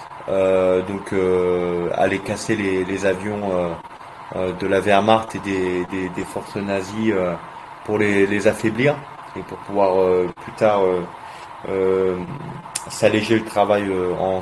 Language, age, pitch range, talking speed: French, 20-39, 95-115 Hz, 155 wpm